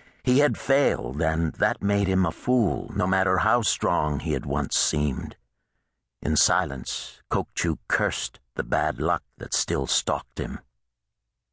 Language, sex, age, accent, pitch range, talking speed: English, male, 60-79, American, 75-100 Hz, 145 wpm